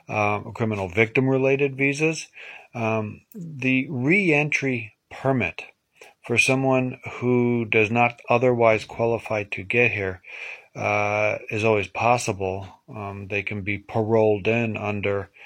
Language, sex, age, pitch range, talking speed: English, male, 40-59, 105-120 Hz, 115 wpm